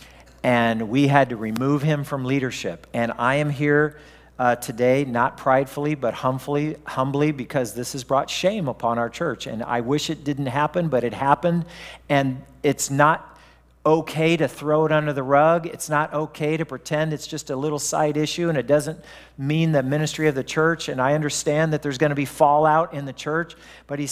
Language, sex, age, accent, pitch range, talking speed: English, male, 50-69, American, 135-165 Hz, 195 wpm